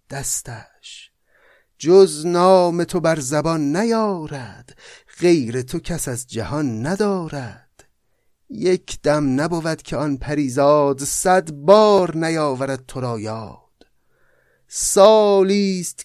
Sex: male